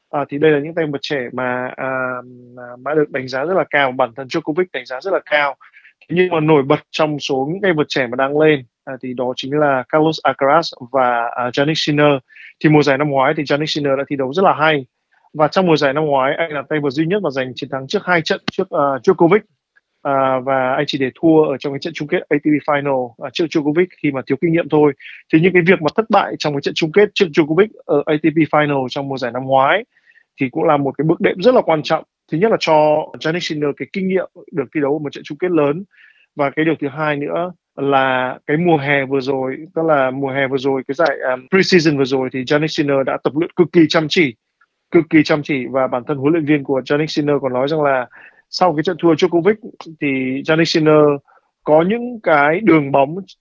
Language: Vietnamese